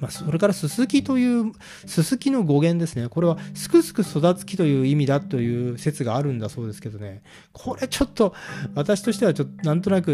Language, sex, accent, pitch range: Japanese, male, native, 125-200 Hz